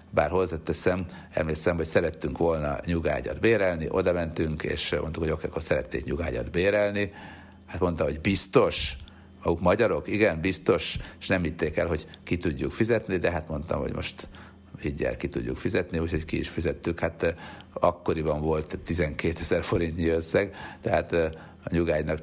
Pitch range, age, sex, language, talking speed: 80-95 Hz, 60-79, male, Hungarian, 155 wpm